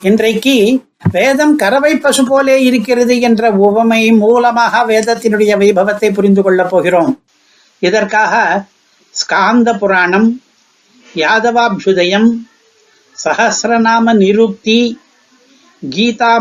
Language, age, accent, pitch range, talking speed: Tamil, 60-79, native, 205-240 Hz, 65 wpm